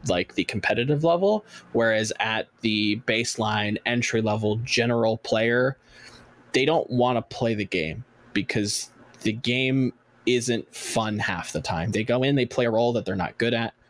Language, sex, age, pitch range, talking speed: English, male, 20-39, 110-130 Hz, 170 wpm